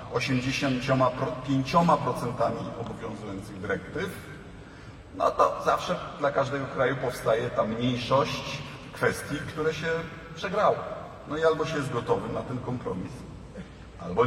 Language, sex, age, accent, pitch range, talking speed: Polish, male, 50-69, native, 125-155 Hz, 110 wpm